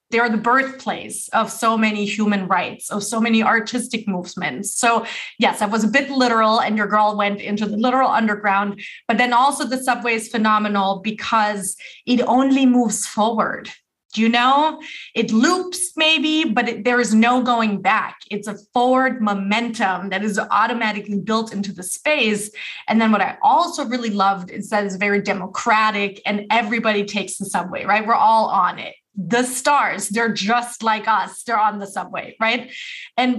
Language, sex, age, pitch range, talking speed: English, female, 20-39, 200-240 Hz, 175 wpm